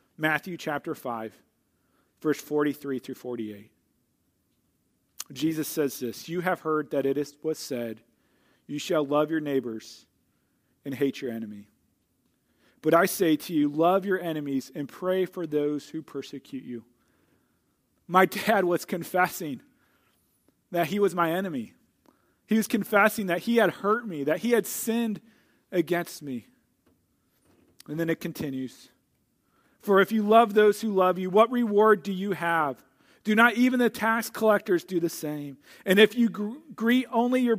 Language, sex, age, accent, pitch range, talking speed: English, male, 40-59, American, 155-220 Hz, 155 wpm